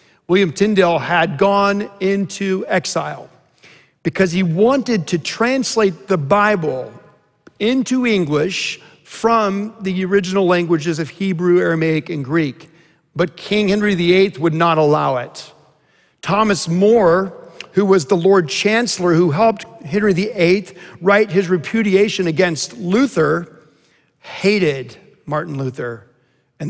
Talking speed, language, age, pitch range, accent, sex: 115 wpm, English, 50-69, 150-200 Hz, American, male